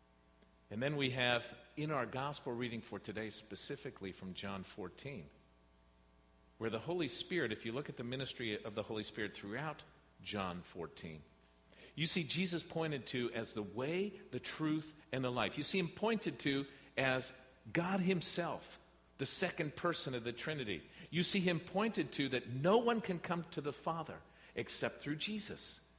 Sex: male